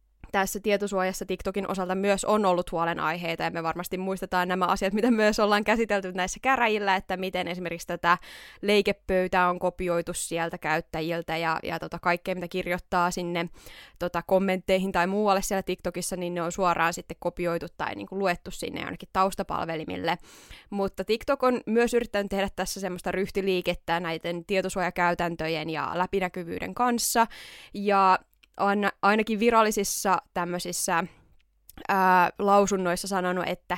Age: 20-39